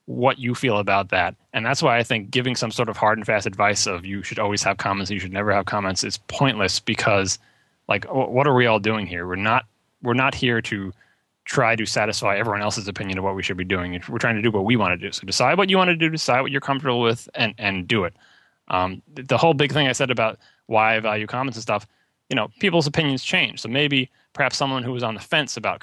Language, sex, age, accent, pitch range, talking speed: English, male, 20-39, American, 100-125 Hz, 260 wpm